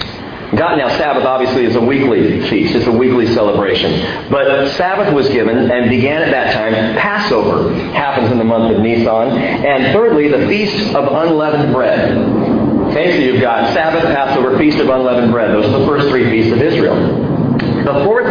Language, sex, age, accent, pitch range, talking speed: English, male, 50-69, American, 115-155 Hz, 175 wpm